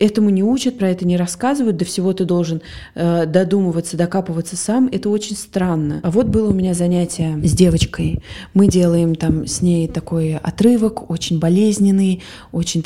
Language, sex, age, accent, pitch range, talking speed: Russian, female, 20-39, native, 175-215 Hz, 170 wpm